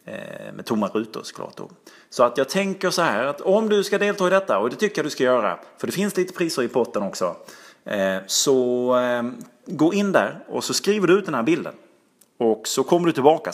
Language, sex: Swedish, male